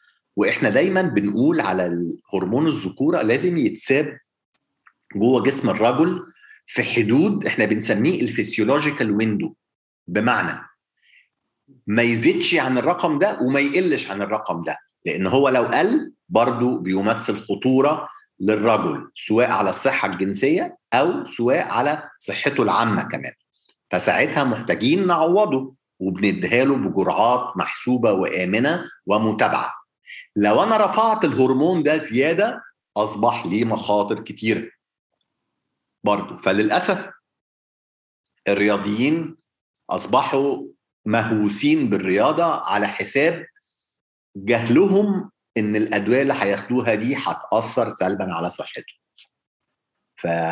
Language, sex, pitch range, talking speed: Arabic, male, 105-155 Hz, 100 wpm